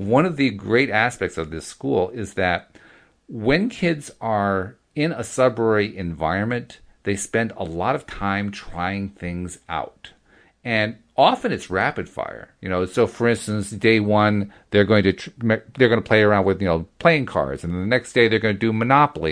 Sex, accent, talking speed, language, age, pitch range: male, American, 195 wpm, English, 40-59, 100-125 Hz